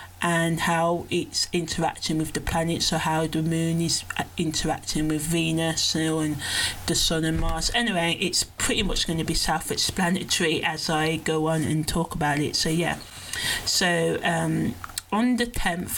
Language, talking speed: English, 160 wpm